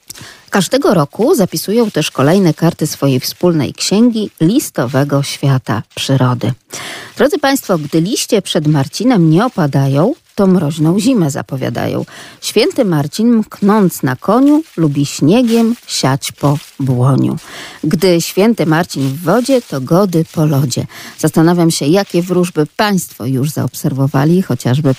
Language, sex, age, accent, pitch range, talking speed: Polish, female, 40-59, native, 140-180 Hz, 120 wpm